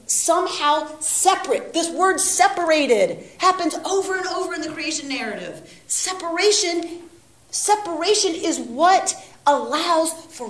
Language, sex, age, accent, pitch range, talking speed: English, female, 40-59, American, 245-375 Hz, 110 wpm